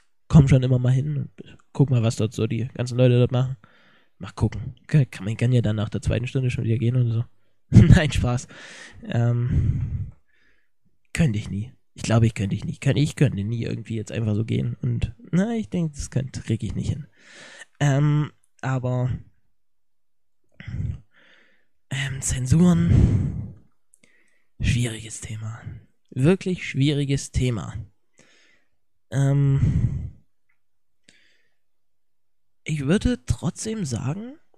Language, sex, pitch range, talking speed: German, male, 115-150 Hz, 130 wpm